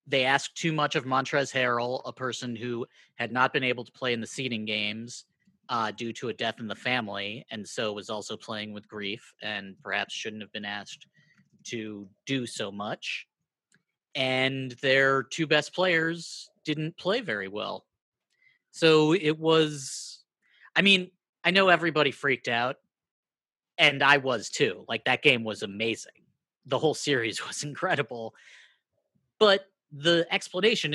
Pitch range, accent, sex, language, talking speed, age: 125-160 Hz, American, male, English, 155 wpm, 30-49